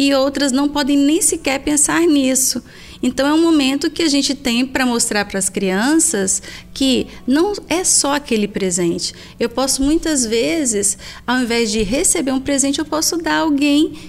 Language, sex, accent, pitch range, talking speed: Portuguese, female, Brazilian, 210-280 Hz, 175 wpm